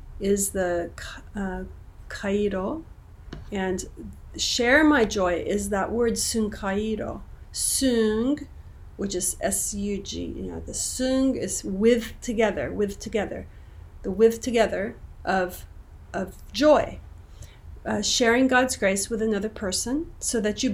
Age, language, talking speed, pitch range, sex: 40-59, English, 125 wpm, 170-230 Hz, female